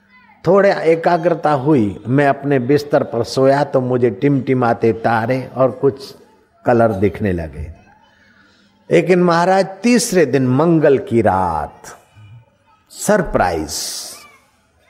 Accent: native